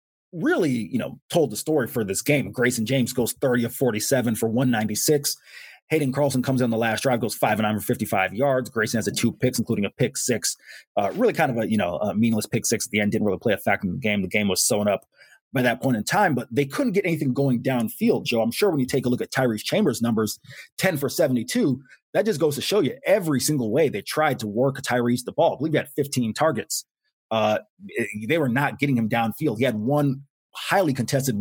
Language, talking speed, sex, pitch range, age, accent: English, 240 wpm, male, 115-140 Hz, 30-49, American